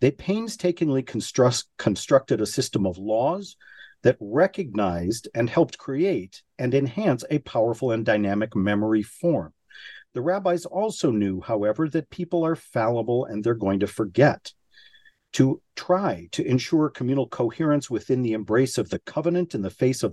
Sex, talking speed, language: male, 150 wpm, English